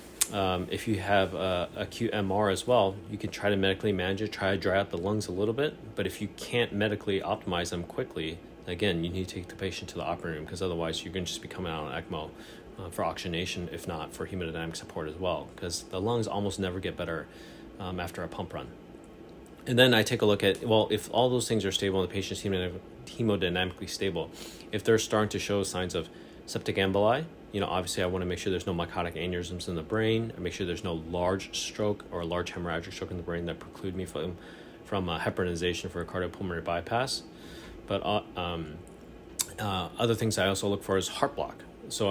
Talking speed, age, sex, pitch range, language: 225 wpm, 30-49, male, 90-105 Hz, English